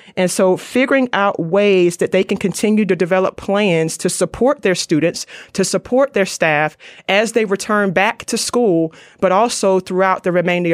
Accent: American